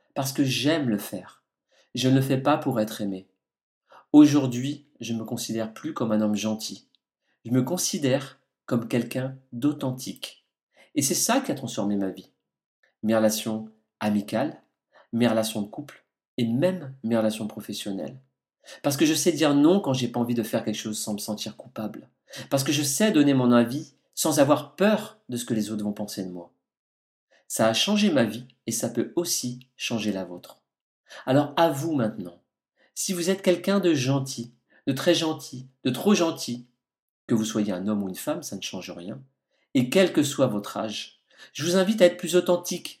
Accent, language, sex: French, French, male